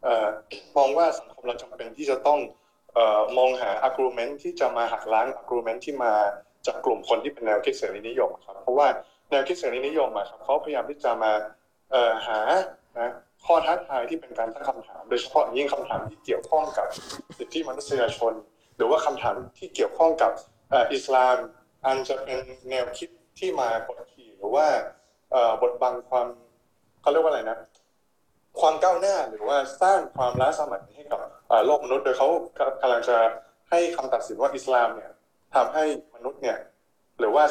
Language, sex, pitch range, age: Thai, male, 120-185 Hz, 20-39